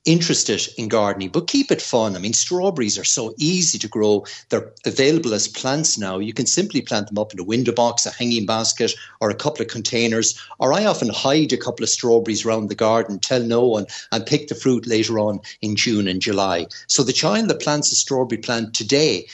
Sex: male